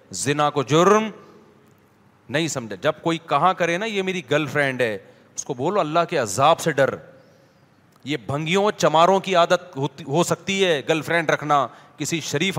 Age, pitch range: 40-59, 170-225 Hz